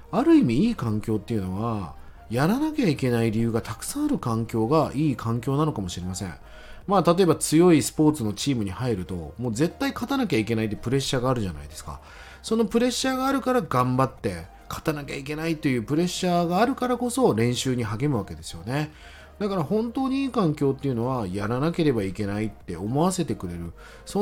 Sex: male